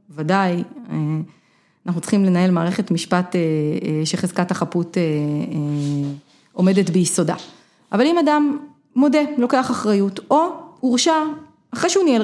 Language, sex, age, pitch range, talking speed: Hebrew, female, 30-49, 175-230 Hz, 110 wpm